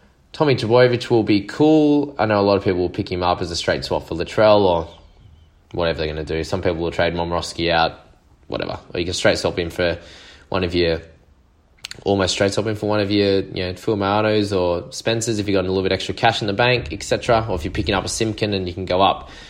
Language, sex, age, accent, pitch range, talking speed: English, male, 20-39, Australian, 85-105 Hz, 250 wpm